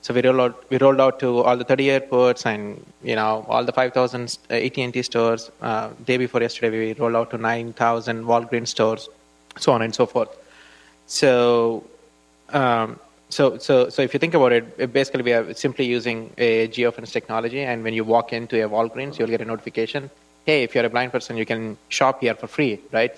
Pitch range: 110-125 Hz